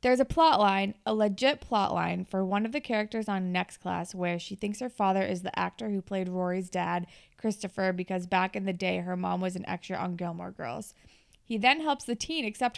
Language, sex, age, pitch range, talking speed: English, female, 20-39, 180-220 Hz, 225 wpm